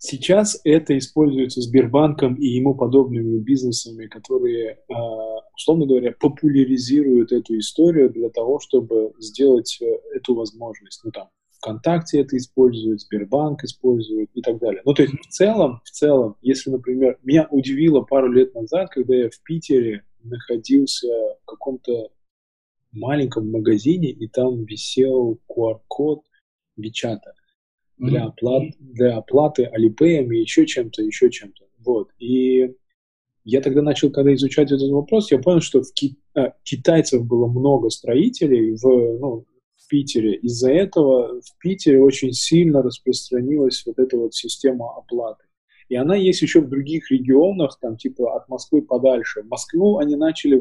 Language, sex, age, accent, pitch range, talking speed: Russian, male, 20-39, native, 125-170 Hz, 140 wpm